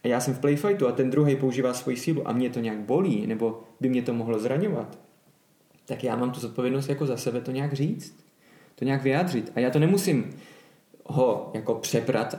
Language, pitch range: Czech, 125-150 Hz